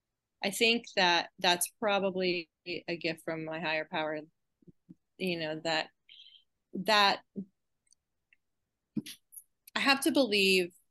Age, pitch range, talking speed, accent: 20-39, 170-200 Hz, 105 wpm, American